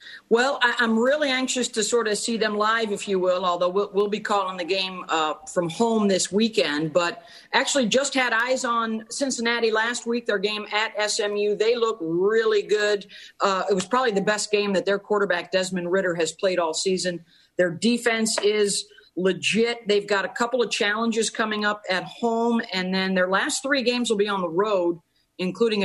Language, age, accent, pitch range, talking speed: English, 40-59, American, 180-230 Hz, 195 wpm